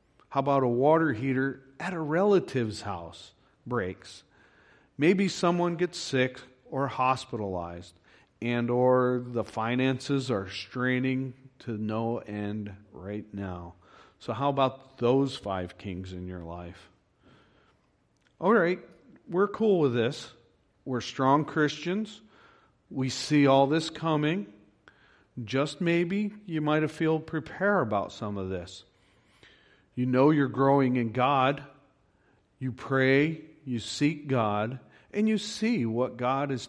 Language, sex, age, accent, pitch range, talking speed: English, male, 40-59, American, 110-145 Hz, 130 wpm